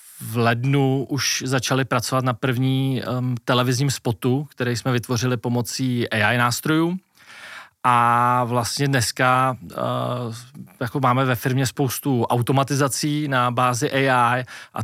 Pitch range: 120-135 Hz